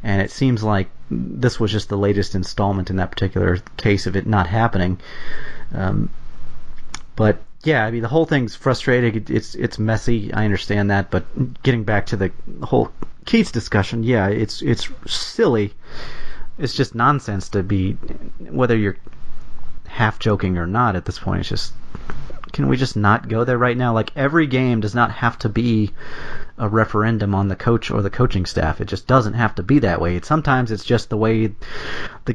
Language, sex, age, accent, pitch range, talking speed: English, male, 30-49, American, 100-120 Hz, 185 wpm